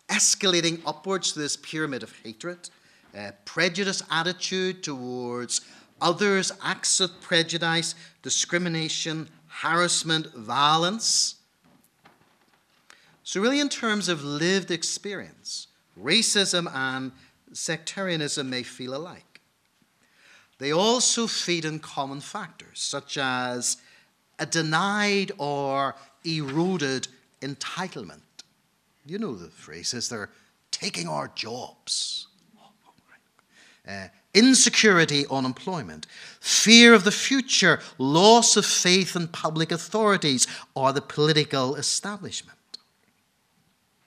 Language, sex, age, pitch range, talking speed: English, male, 50-69, 140-195 Hz, 95 wpm